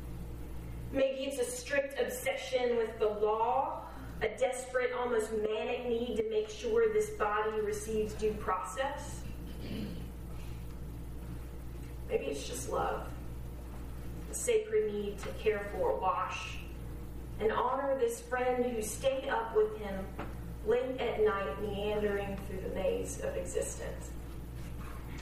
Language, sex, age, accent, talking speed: English, female, 30-49, American, 120 wpm